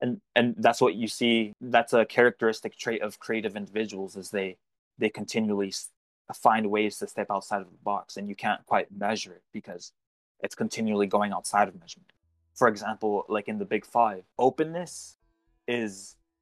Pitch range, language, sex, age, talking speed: 105-130 Hz, English, male, 20-39, 170 wpm